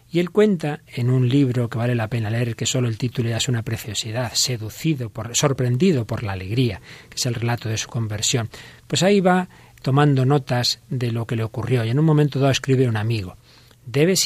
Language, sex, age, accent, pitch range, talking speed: Spanish, male, 40-59, Spanish, 120-150 Hz, 210 wpm